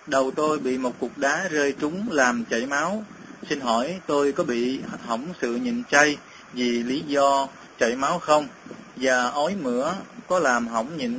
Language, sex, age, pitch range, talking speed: Vietnamese, male, 20-39, 125-165 Hz, 175 wpm